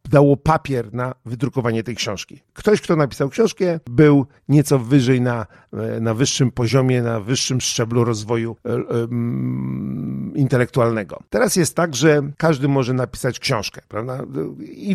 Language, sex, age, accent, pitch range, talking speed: Polish, male, 50-69, native, 115-150 Hz, 135 wpm